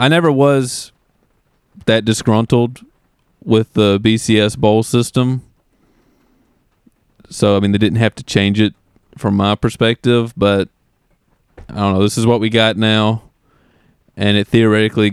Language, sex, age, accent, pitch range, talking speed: English, male, 30-49, American, 100-115 Hz, 140 wpm